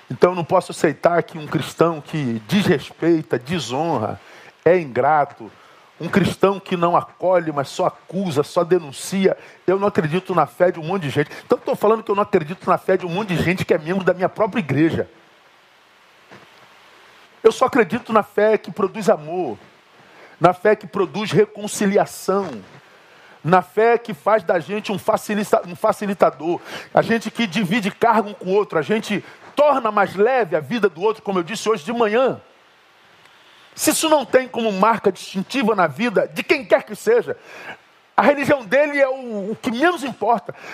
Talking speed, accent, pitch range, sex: 185 wpm, Brazilian, 175-235 Hz, male